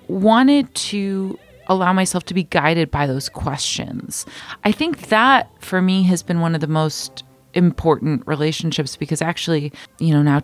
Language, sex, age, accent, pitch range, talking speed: English, female, 30-49, American, 155-185 Hz, 160 wpm